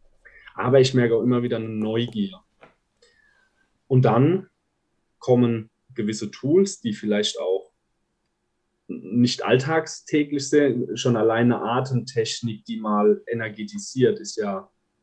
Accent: German